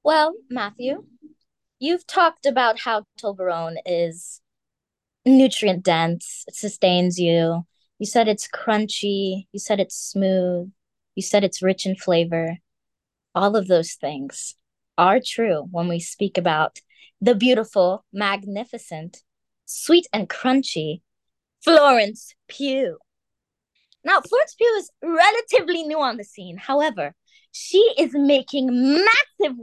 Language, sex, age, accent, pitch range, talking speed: English, female, 20-39, American, 185-280 Hz, 115 wpm